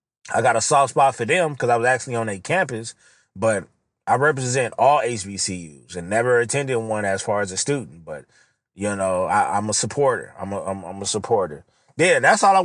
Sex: male